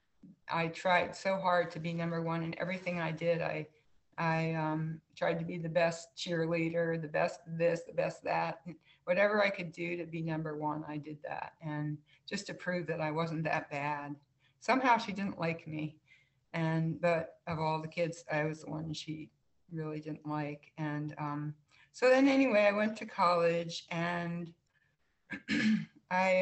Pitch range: 155-180 Hz